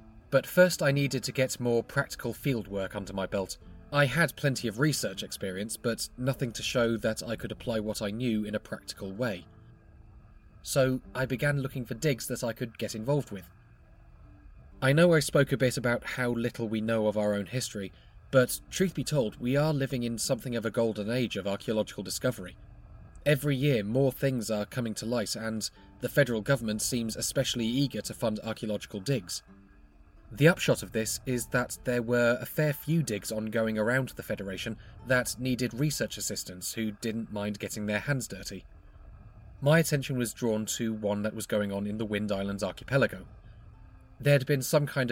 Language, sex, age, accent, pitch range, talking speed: English, male, 30-49, British, 105-130 Hz, 190 wpm